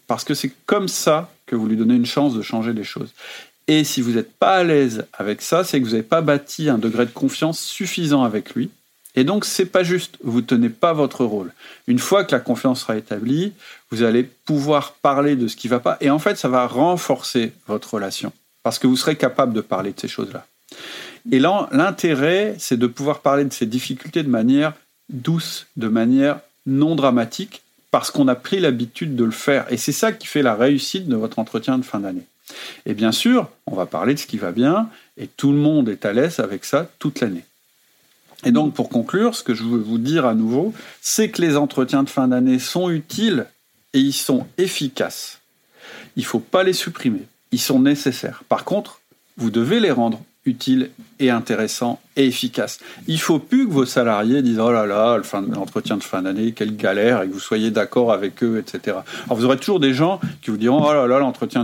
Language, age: French, 40-59